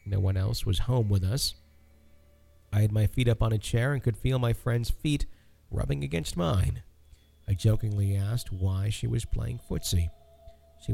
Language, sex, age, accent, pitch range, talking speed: English, male, 50-69, American, 95-120 Hz, 180 wpm